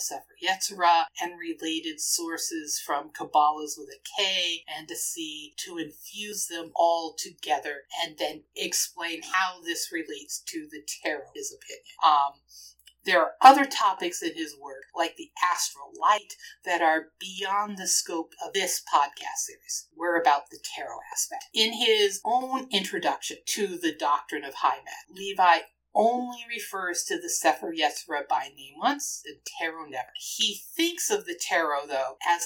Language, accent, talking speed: English, American, 150 wpm